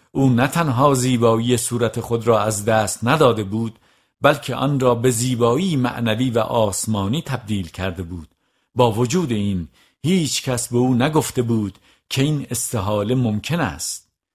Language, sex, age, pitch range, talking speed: Persian, male, 50-69, 100-125 Hz, 150 wpm